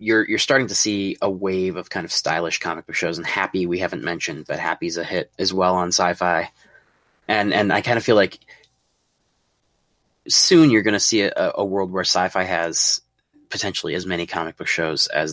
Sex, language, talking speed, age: male, English, 205 wpm, 20-39